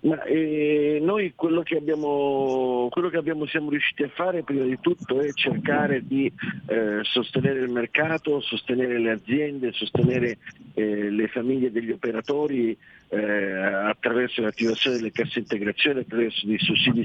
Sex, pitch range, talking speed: male, 115-140 Hz, 140 wpm